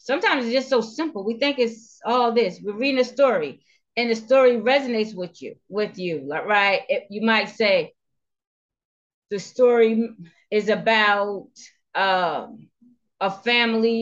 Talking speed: 145 wpm